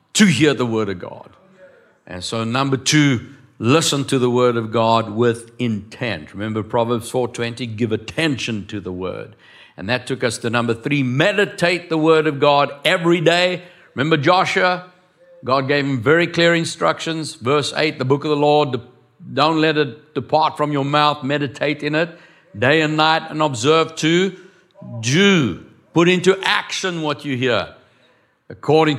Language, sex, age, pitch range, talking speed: English, male, 60-79, 120-160 Hz, 165 wpm